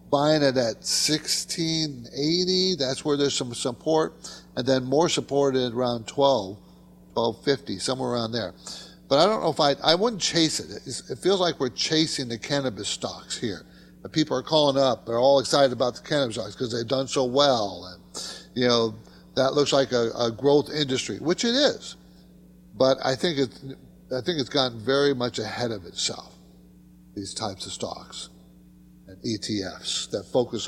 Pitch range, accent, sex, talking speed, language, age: 115-180 Hz, American, male, 175 wpm, English, 50-69